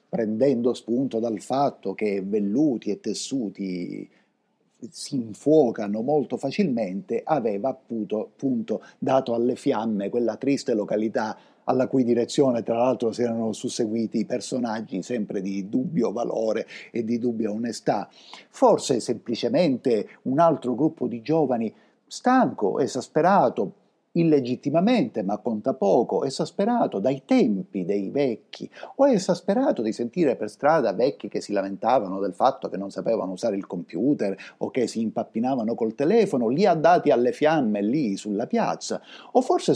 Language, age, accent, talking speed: Italian, 50-69, native, 140 wpm